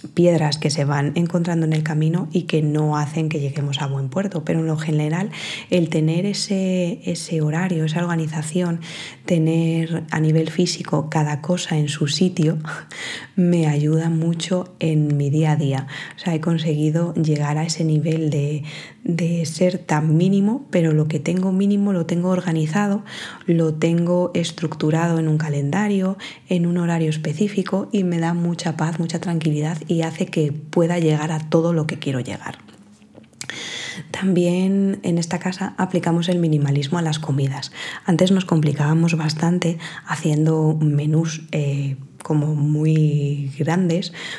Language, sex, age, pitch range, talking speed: Spanish, female, 20-39, 155-175 Hz, 155 wpm